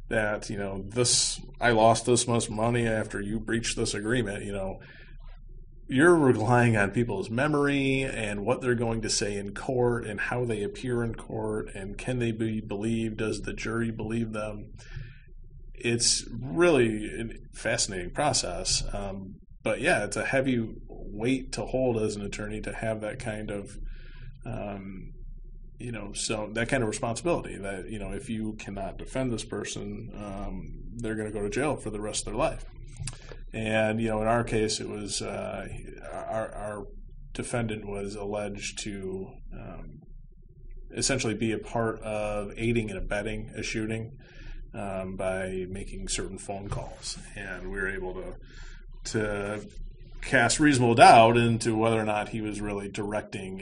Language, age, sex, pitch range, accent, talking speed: English, 30-49, male, 105-120 Hz, American, 165 wpm